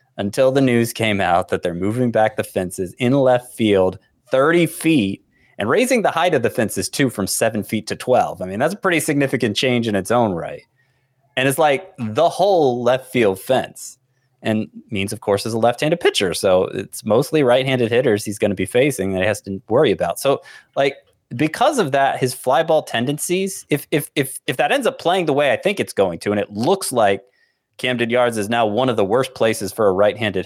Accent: American